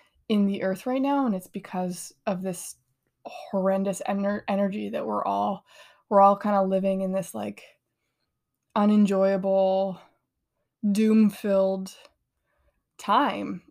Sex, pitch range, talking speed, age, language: female, 190-215 Hz, 120 wpm, 20-39, English